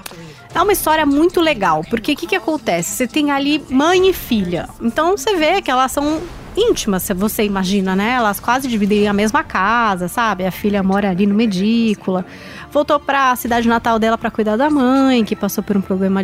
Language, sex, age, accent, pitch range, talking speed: English, female, 20-39, Brazilian, 195-295 Hz, 200 wpm